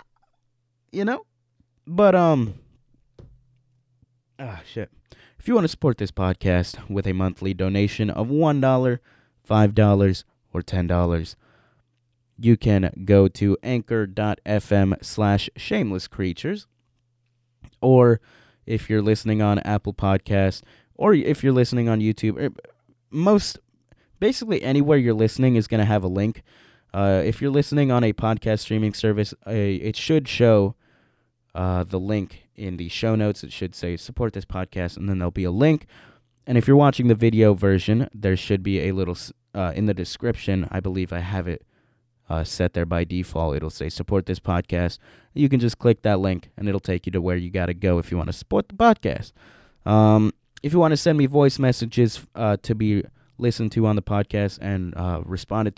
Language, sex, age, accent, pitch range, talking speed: English, male, 20-39, American, 95-120 Hz, 175 wpm